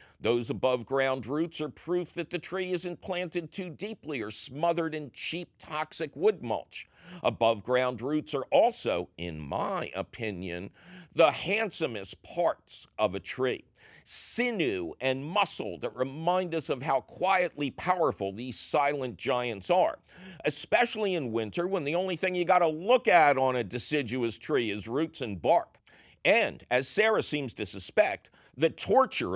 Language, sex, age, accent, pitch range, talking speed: English, male, 50-69, American, 125-180 Hz, 150 wpm